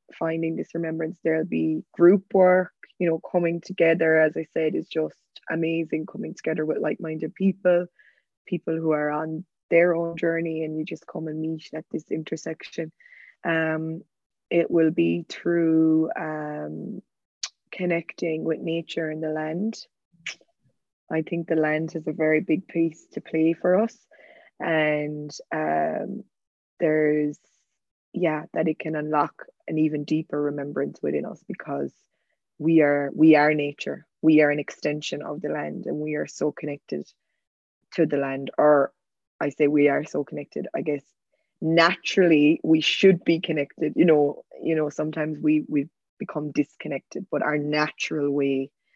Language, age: English, 20-39